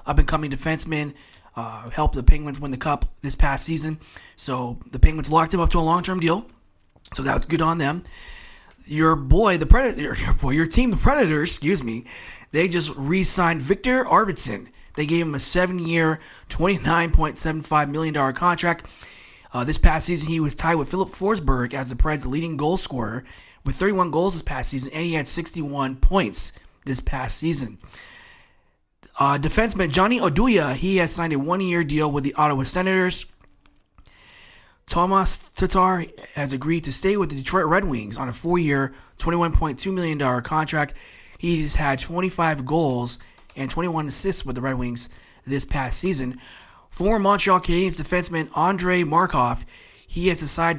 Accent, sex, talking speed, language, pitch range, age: American, male, 165 wpm, English, 140-175 Hz, 20-39